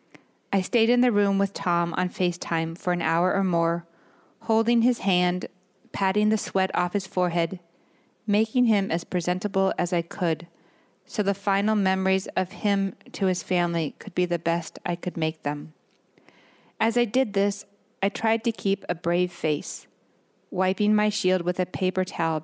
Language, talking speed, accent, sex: English, 175 wpm, American, female